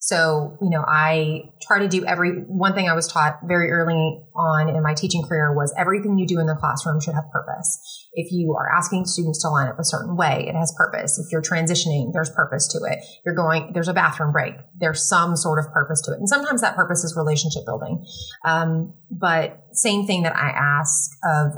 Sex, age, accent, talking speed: female, 30-49, American, 220 wpm